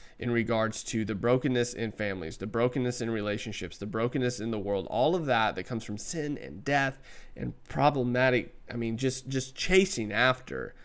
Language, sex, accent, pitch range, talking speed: English, male, American, 115-150 Hz, 185 wpm